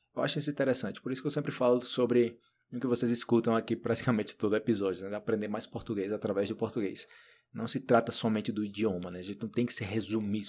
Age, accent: 20-39, Brazilian